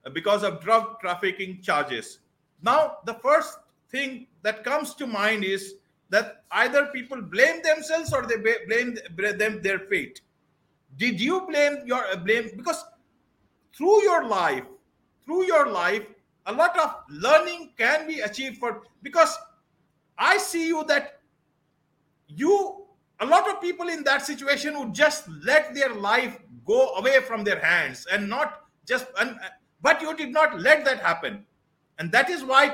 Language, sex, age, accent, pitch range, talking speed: English, male, 50-69, Indian, 220-315 Hz, 150 wpm